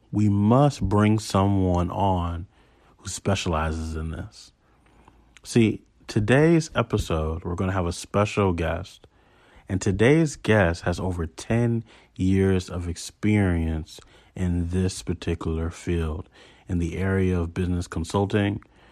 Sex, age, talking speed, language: male, 40-59, 120 wpm, English